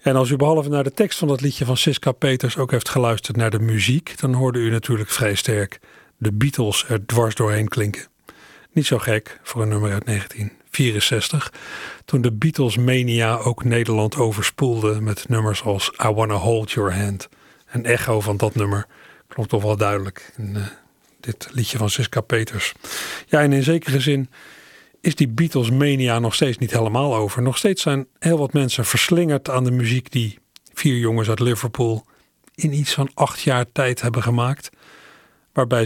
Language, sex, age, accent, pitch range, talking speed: Dutch, male, 40-59, Dutch, 110-140 Hz, 175 wpm